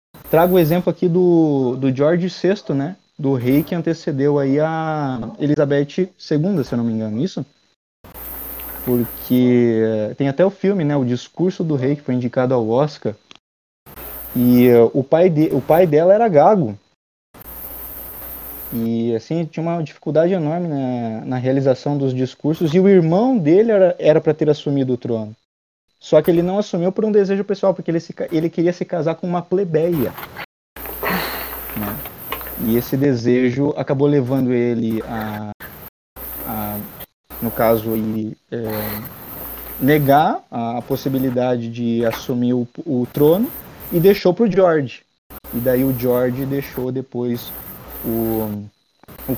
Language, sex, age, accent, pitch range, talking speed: Portuguese, male, 20-39, Brazilian, 115-165 Hz, 150 wpm